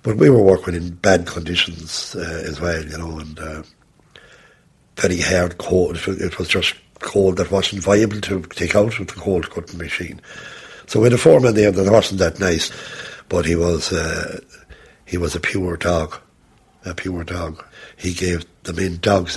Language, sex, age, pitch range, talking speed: English, male, 60-79, 85-95 Hz, 180 wpm